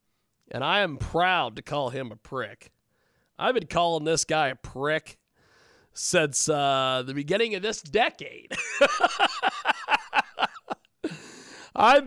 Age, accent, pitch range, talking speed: 40-59, American, 115-185 Hz, 120 wpm